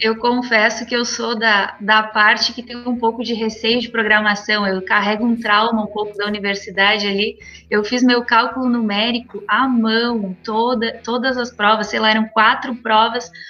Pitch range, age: 210-245 Hz, 20-39